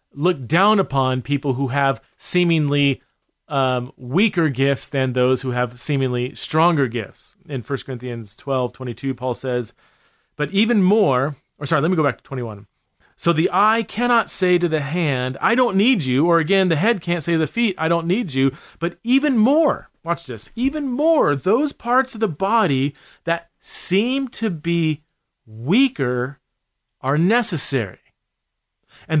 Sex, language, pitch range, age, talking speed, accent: male, English, 130-185 Hz, 40-59, 160 wpm, American